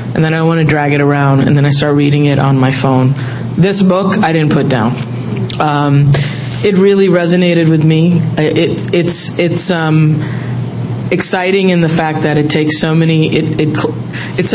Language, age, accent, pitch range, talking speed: English, 20-39, American, 145-175 Hz, 185 wpm